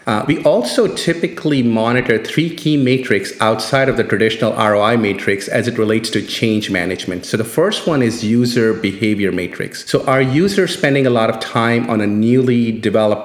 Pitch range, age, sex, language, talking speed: 105-135 Hz, 30-49, male, English, 180 wpm